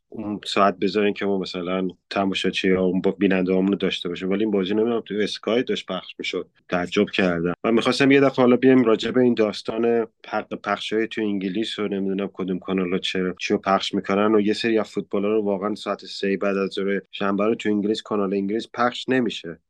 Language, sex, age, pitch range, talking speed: Persian, male, 30-49, 95-110 Hz, 200 wpm